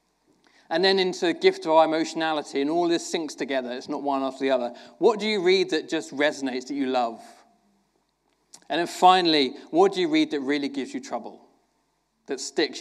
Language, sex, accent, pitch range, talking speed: English, male, British, 140-235 Hz, 200 wpm